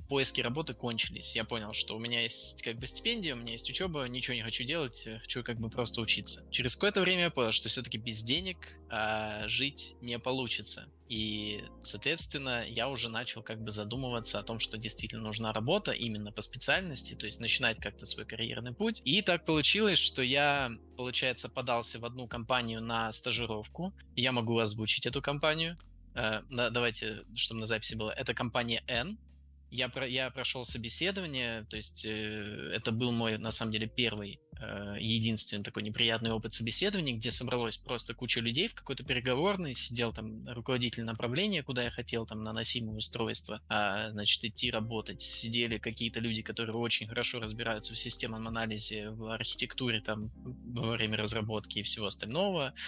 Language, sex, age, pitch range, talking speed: Russian, male, 20-39, 110-125 Hz, 165 wpm